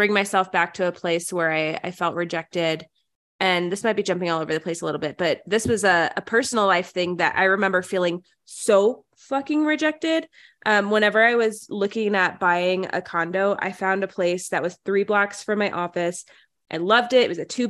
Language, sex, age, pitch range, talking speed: English, female, 20-39, 185-230 Hz, 220 wpm